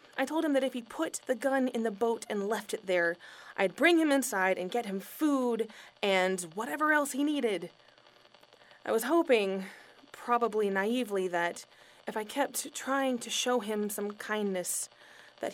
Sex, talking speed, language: female, 175 wpm, English